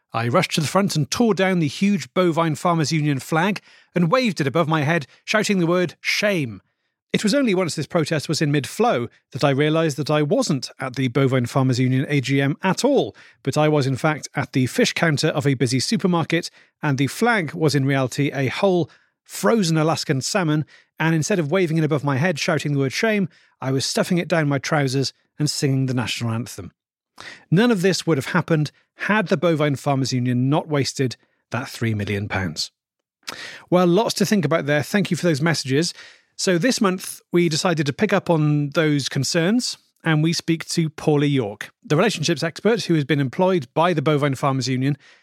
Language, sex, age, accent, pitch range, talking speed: English, male, 40-59, British, 140-185 Hz, 200 wpm